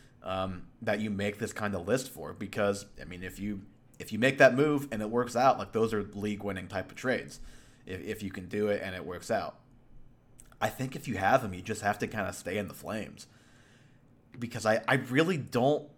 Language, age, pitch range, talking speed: English, 30-49, 100-125 Hz, 235 wpm